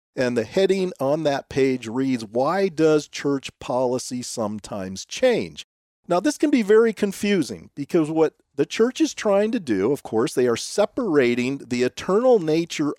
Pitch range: 130-215 Hz